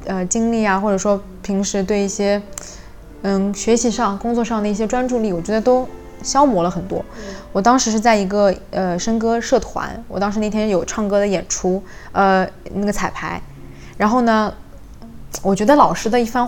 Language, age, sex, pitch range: Chinese, 20-39, female, 190-235 Hz